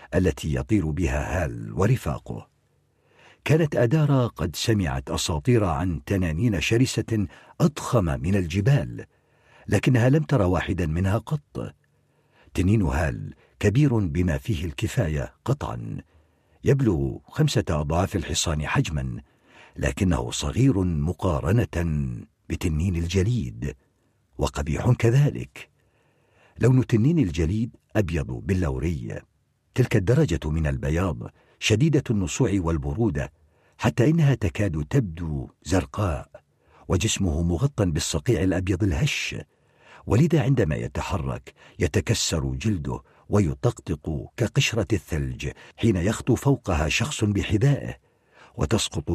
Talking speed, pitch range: 95 wpm, 80-115 Hz